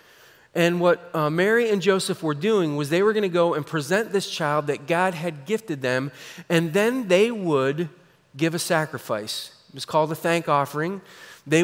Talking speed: 185 wpm